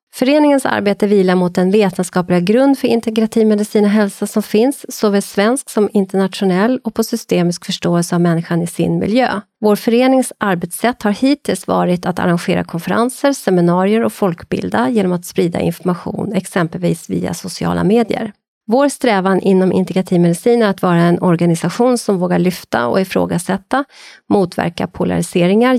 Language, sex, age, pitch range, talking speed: Swedish, female, 30-49, 175-225 Hz, 145 wpm